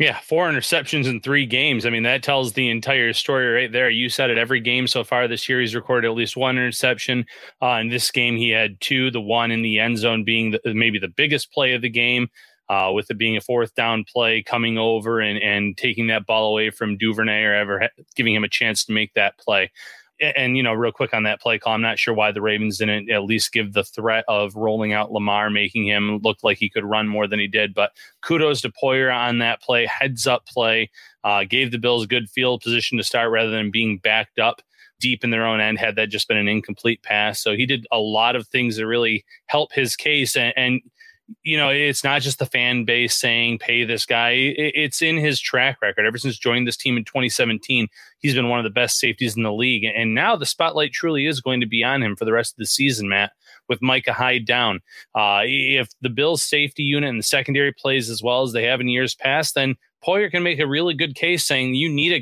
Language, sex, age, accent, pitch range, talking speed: English, male, 30-49, American, 110-135 Hz, 245 wpm